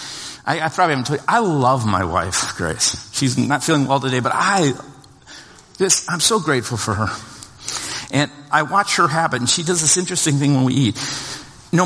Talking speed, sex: 190 wpm, male